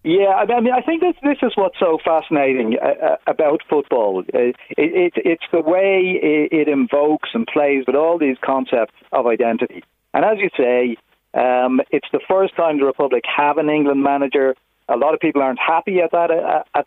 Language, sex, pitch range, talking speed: English, male, 125-165 Hz, 190 wpm